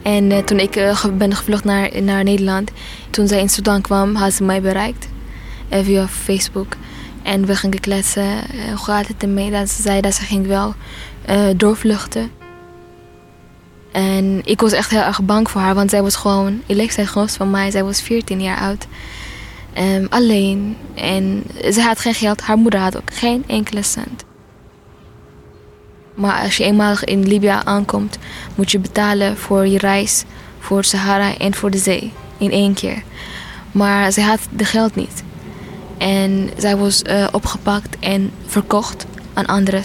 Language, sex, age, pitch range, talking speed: Dutch, female, 10-29, 195-205 Hz, 165 wpm